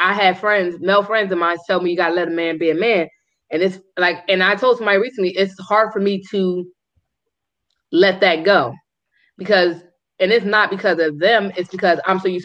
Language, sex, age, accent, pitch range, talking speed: English, female, 20-39, American, 165-190 Hz, 220 wpm